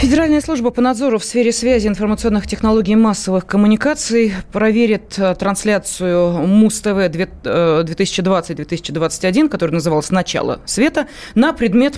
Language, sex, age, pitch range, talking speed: Russian, female, 30-49, 185-240 Hz, 110 wpm